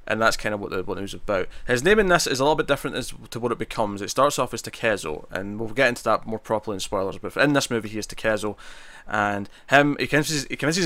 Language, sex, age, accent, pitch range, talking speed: English, male, 20-39, British, 110-130 Hz, 280 wpm